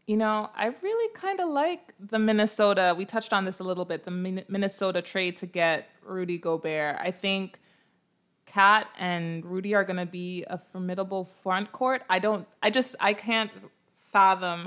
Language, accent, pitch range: English, American, 175-205 Hz